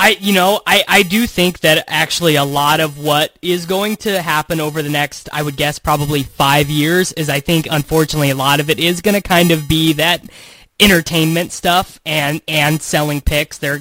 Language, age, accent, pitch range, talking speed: English, 20-39, American, 145-170 Hz, 215 wpm